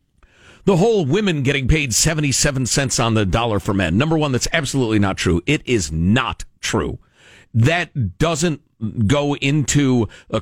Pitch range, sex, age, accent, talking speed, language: 105-155 Hz, male, 50-69, American, 155 wpm, English